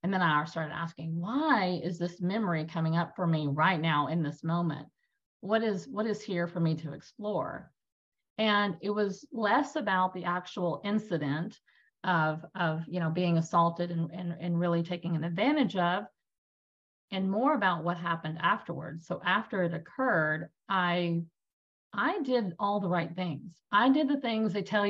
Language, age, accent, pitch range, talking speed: English, 40-59, American, 165-205 Hz, 175 wpm